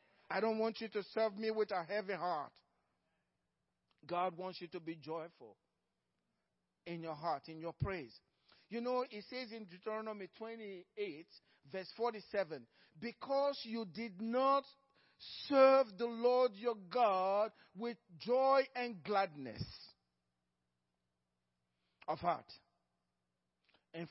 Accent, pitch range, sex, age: Nigerian, 170-260 Hz, male, 50-69